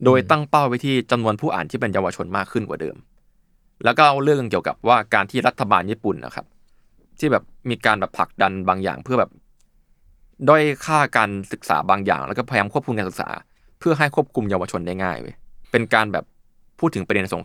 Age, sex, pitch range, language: 20-39, male, 95-135 Hz, Thai